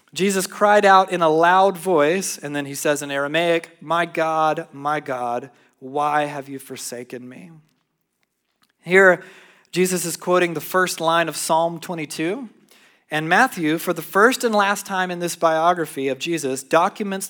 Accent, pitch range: American, 150-185 Hz